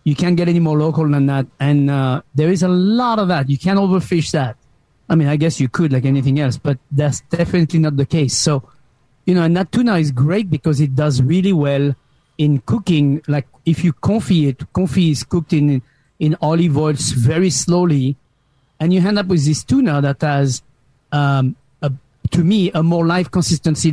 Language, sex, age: English, male, 40-59